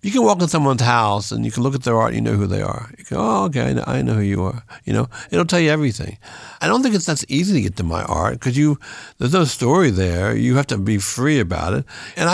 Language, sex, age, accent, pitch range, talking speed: English, male, 60-79, American, 105-135 Hz, 290 wpm